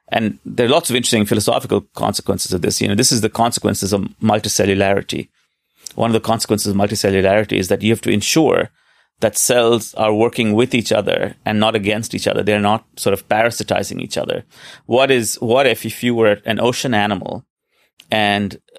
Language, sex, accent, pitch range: English, male, Indian, 105-120 Hz